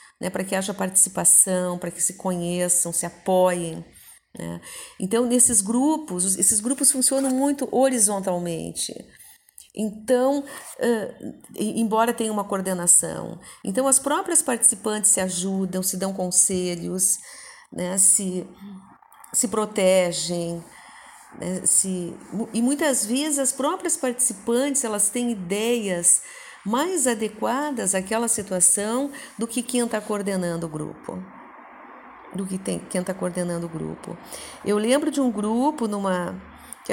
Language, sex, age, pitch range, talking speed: Portuguese, female, 50-69, 185-240 Hz, 120 wpm